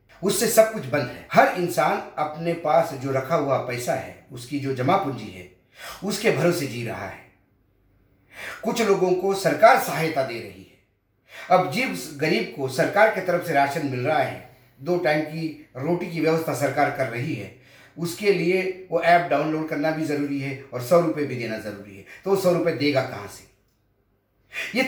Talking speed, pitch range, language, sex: 185 wpm, 125-180 Hz, Hindi, male